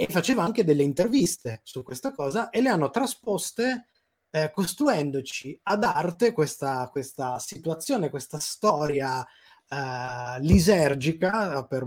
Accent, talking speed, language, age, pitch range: native, 120 wpm, Italian, 20-39, 140-180 Hz